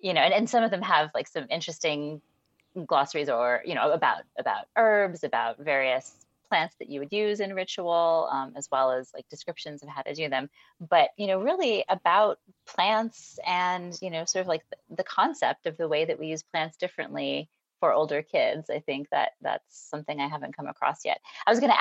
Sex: female